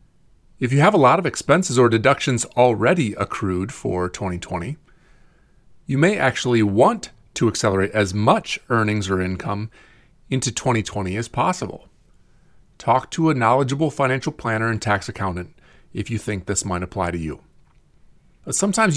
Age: 30-49